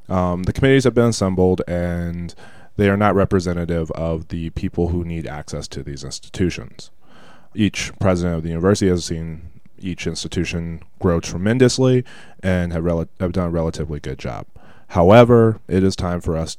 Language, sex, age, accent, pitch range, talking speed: English, male, 20-39, American, 85-110 Hz, 165 wpm